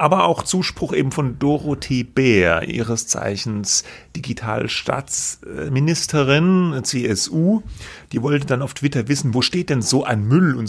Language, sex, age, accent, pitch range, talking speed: German, male, 30-49, German, 115-155 Hz, 135 wpm